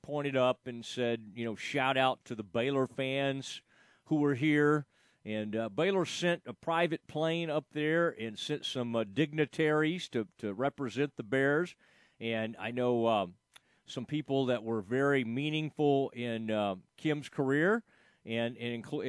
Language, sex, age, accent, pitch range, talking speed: English, male, 40-59, American, 115-150 Hz, 155 wpm